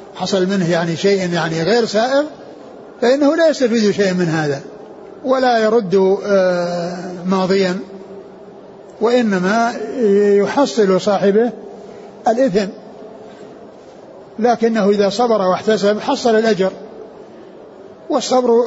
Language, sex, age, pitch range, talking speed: Arabic, male, 60-79, 190-225 Hz, 85 wpm